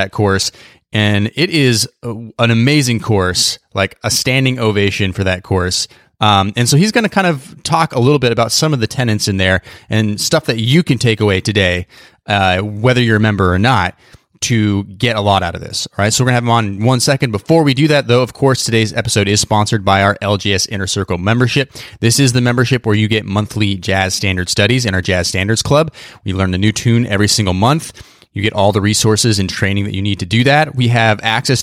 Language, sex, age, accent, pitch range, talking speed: English, male, 30-49, American, 100-130 Hz, 235 wpm